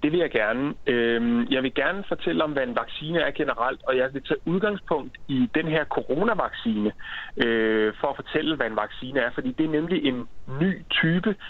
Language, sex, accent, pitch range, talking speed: Danish, male, native, 125-185 Hz, 195 wpm